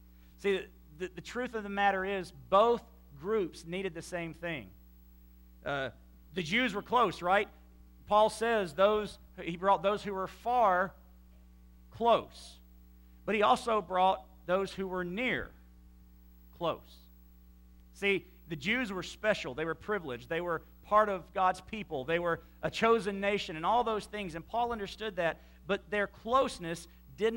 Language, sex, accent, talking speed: English, male, American, 155 wpm